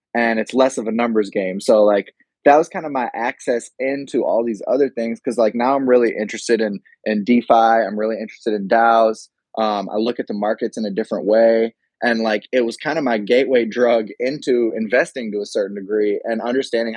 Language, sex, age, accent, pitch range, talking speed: English, male, 20-39, American, 110-130 Hz, 215 wpm